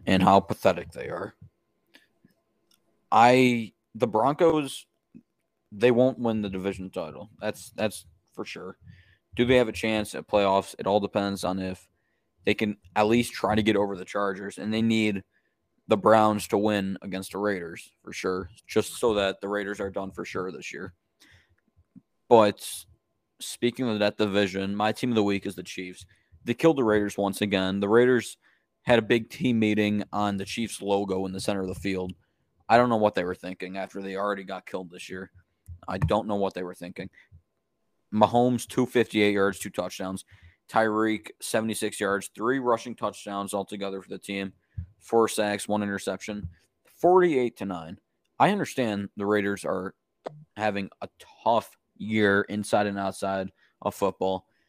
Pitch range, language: 95-110 Hz, English